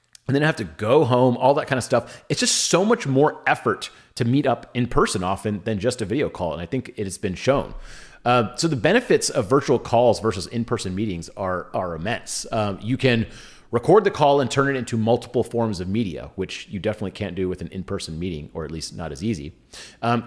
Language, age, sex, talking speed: English, 30-49, male, 235 wpm